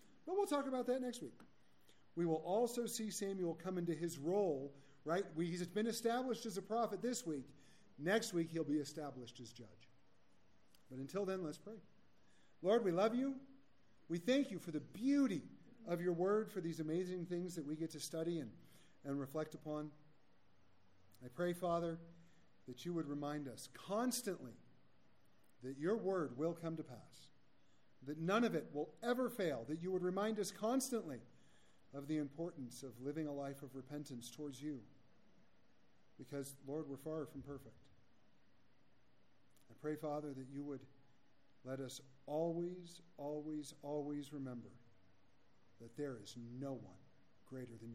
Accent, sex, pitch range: American, male, 130-180 Hz